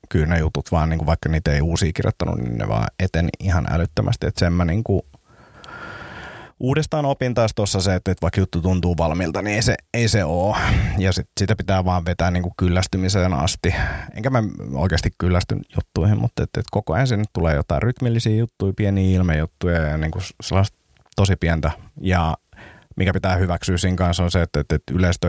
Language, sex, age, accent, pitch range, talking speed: Finnish, male, 30-49, native, 80-100 Hz, 165 wpm